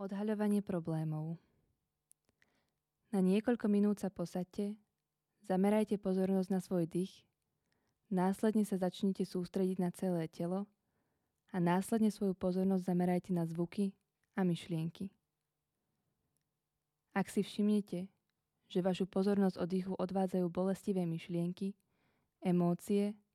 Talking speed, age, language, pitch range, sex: 105 wpm, 20-39, Czech, 180-205 Hz, female